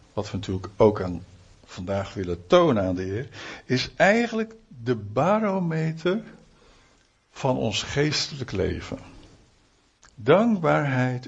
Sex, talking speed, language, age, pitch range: male, 105 wpm, Dutch, 60-79, 105-150 Hz